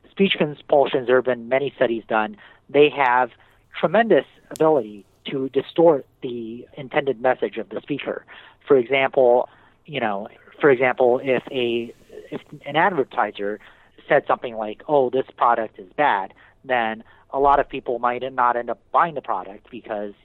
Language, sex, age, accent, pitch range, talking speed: English, male, 30-49, American, 115-145 Hz, 155 wpm